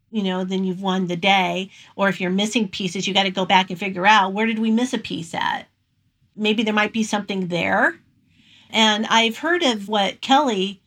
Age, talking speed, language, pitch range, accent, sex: 50-69, 215 wpm, English, 195-230 Hz, American, female